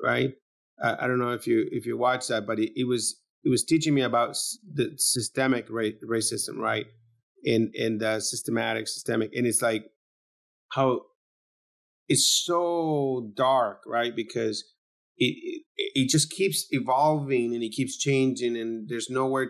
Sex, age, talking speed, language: male, 30-49, 155 wpm, English